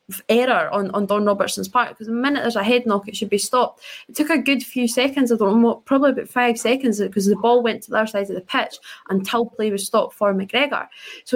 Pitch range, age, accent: 200-240 Hz, 20-39, British